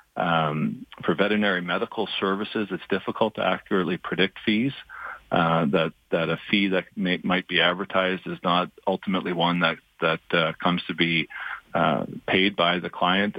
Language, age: English, 40-59